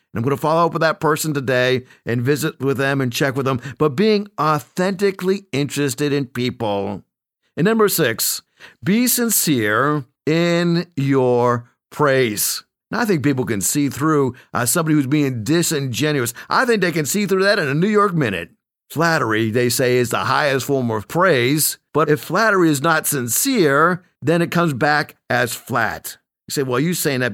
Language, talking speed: English, 180 wpm